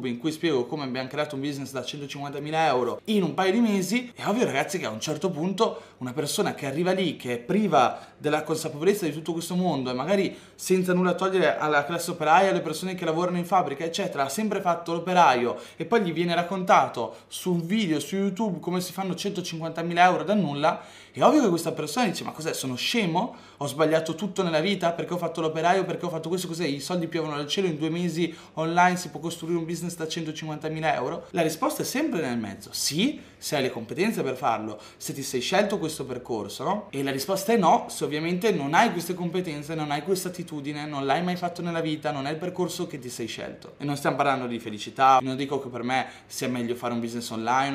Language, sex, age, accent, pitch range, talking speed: Italian, male, 20-39, native, 140-180 Hz, 225 wpm